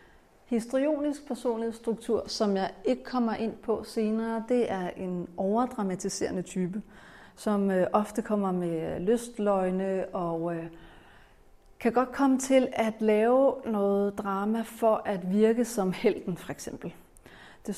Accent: native